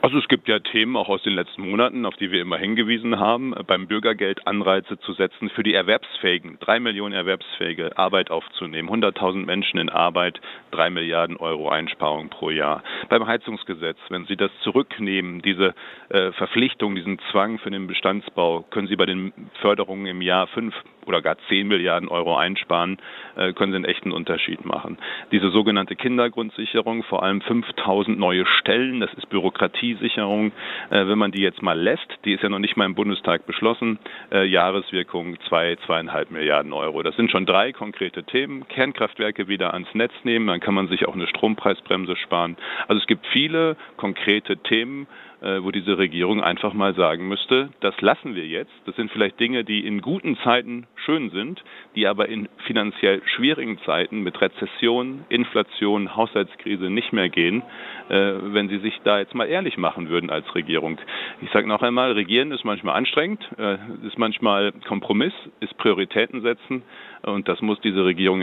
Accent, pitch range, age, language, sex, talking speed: German, 95-115 Hz, 40-59, German, male, 170 wpm